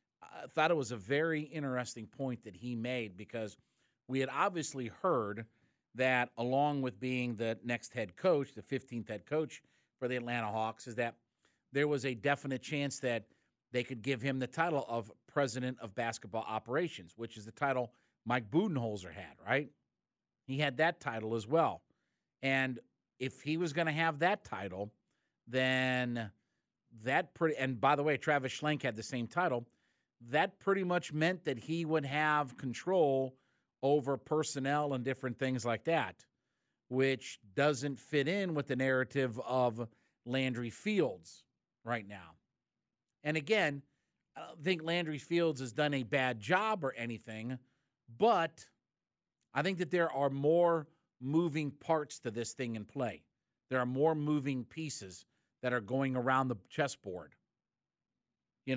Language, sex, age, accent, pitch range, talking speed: English, male, 50-69, American, 120-150 Hz, 160 wpm